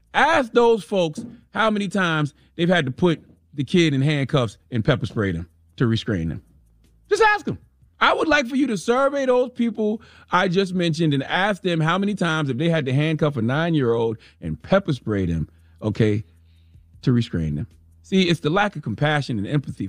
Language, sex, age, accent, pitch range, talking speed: English, male, 30-49, American, 110-175 Hz, 200 wpm